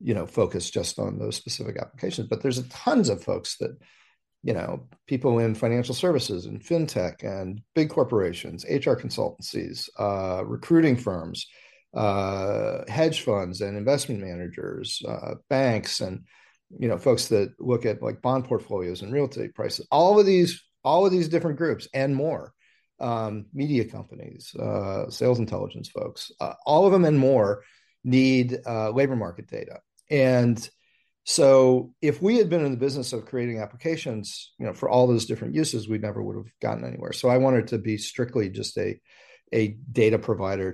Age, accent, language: 40-59, American, English